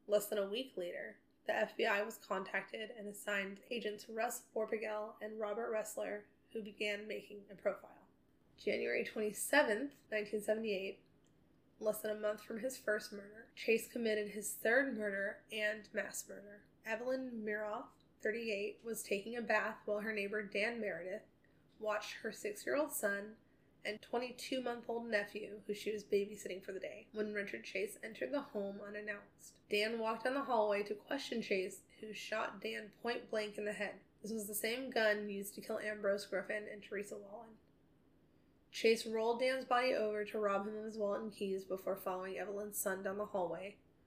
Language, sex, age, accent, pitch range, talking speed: English, female, 20-39, American, 205-225 Hz, 165 wpm